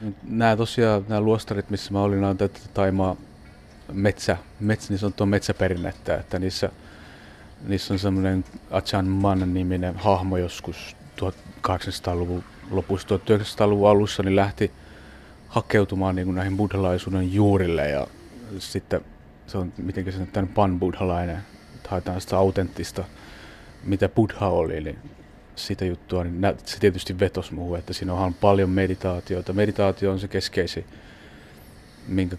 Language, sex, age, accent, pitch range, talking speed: Finnish, male, 30-49, native, 90-100 Hz, 125 wpm